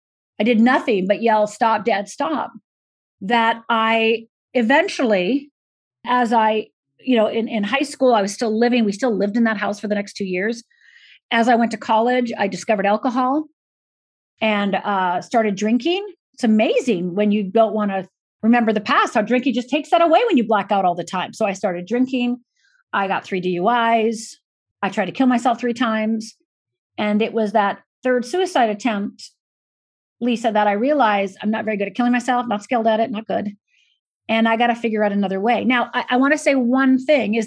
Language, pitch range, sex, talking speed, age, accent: English, 210-260 Hz, female, 200 wpm, 40-59, American